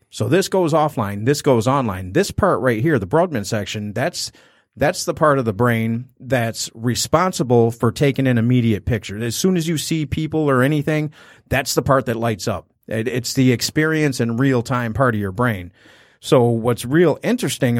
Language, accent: English, American